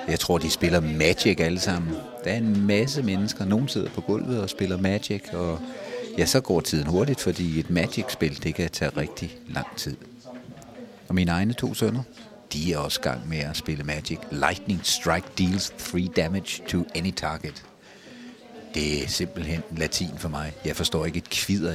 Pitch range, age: 85-115 Hz, 60-79